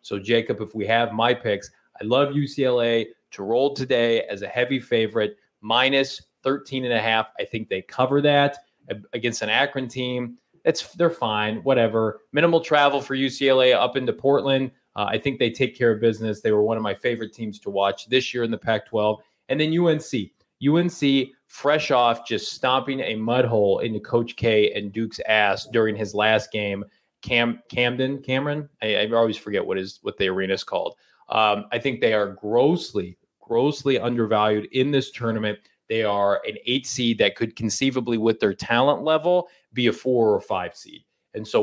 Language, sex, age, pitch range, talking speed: English, male, 20-39, 110-135 Hz, 185 wpm